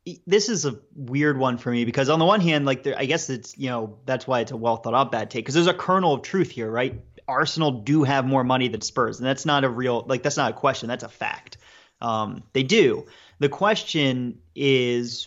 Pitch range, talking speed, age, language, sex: 120-145 Hz, 240 wpm, 30-49, English, male